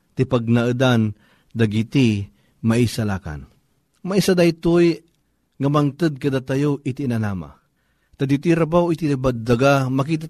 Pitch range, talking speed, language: 120-150 Hz, 100 wpm, Filipino